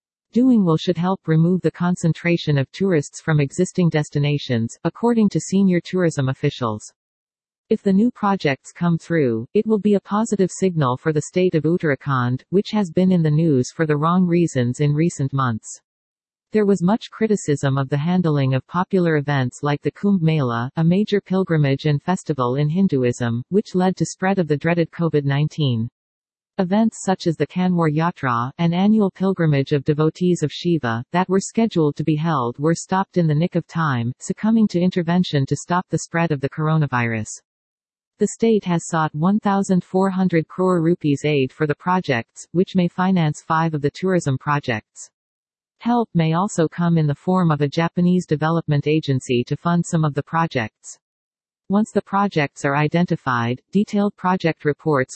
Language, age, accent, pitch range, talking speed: English, 40-59, American, 145-185 Hz, 170 wpm